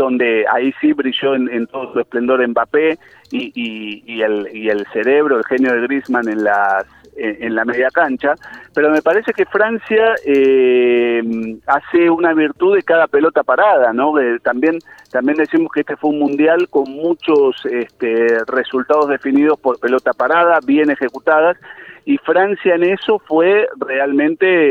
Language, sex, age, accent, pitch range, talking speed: Spanish, male, 40-59, Argentinian, 130-175 Hz, 165 wpm